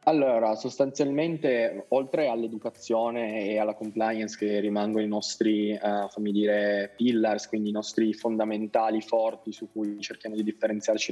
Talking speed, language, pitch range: 130 wpm, Italian, 105-115 Hz